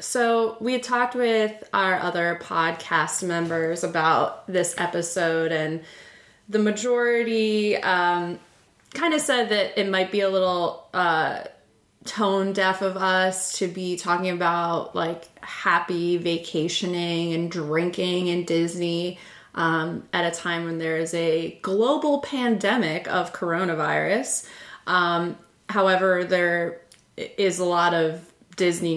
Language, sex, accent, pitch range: English, female, American, 165-195 Hz